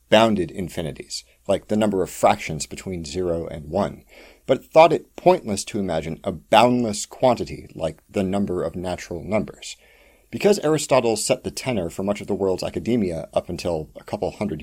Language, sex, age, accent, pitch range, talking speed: English, male, 40-59, American, 90-125 Hz, 170 wpm